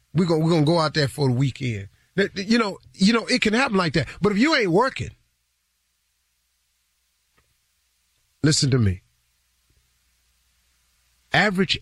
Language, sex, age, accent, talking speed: English, male, 50-69, American, 135 wpm